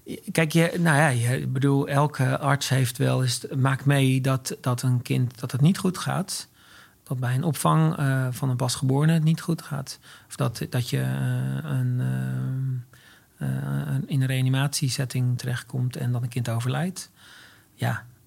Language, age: Dutch, 40-59